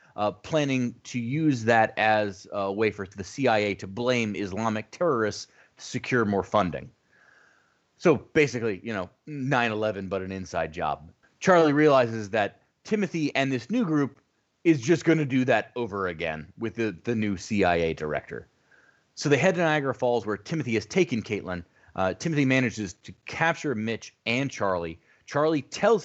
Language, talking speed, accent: English, 165 wpm, American